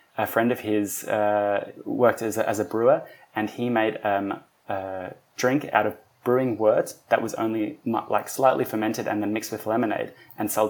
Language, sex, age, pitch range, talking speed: English, male, 20-39, 100-110 Hz, 190 wpm